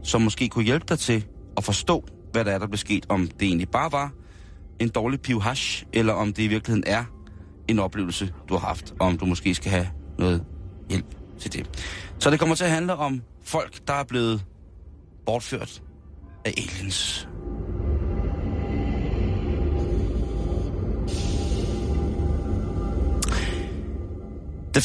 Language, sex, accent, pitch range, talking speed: Danish, male, native, 90-115 Hz, 140 wpm